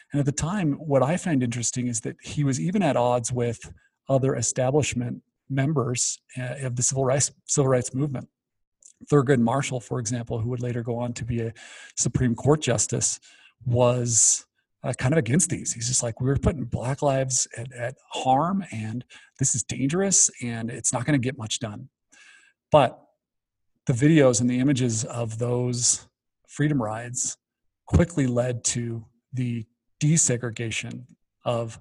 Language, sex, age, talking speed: English, male, 40-59, 160 wpm